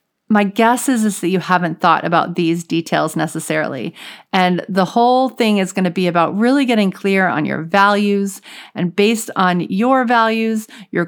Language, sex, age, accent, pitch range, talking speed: English, female, 40-59, American, 175-215 Hz, 180 wpm